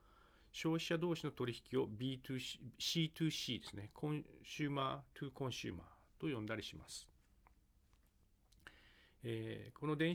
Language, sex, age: Japanese, male, 40-59